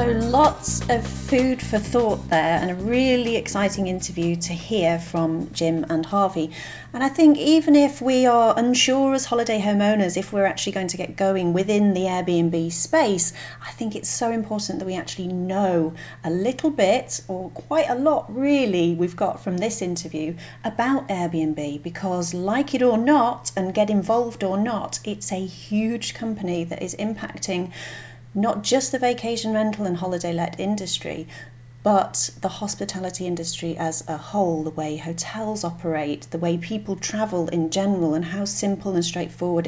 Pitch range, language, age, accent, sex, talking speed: 165-220 Hz, English, 40-59, British, female, 170 wpm